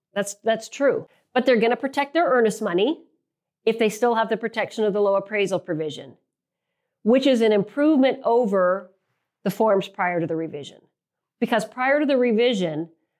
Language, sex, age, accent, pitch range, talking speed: English, female, 40-59, American, 190-255 Hz, 175 wpm